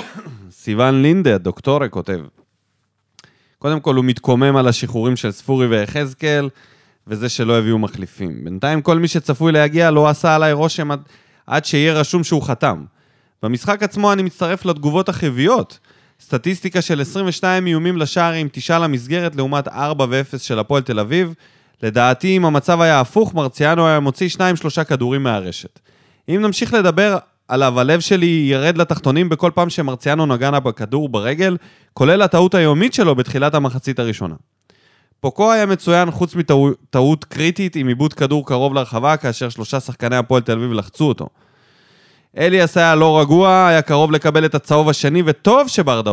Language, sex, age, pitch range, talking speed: Hebrew, male, 20-39, 130-165 Hz, 150 wpm